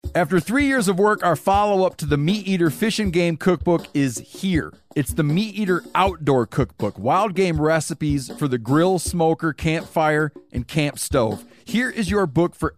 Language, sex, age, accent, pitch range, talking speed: English, male, 40-59, American, 140-175 Hz, 185 wpm